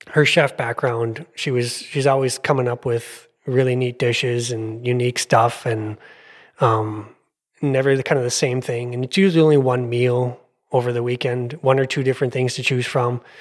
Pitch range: 115-135 Hz